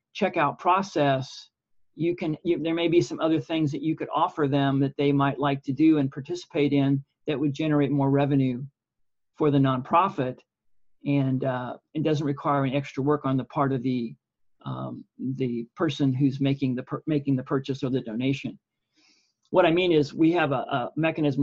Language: English